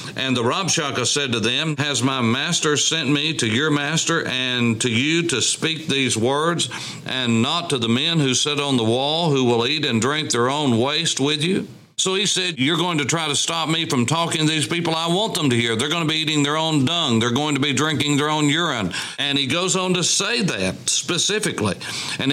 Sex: male